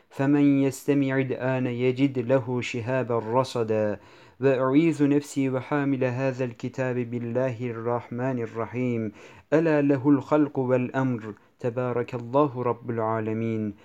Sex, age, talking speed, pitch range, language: male, 50-69, 100 wpm, 115-135 Hz, Turkish